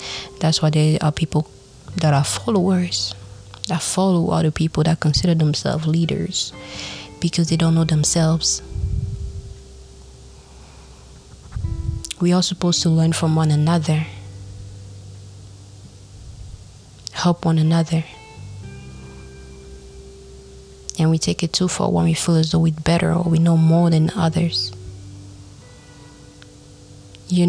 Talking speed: 115 wpm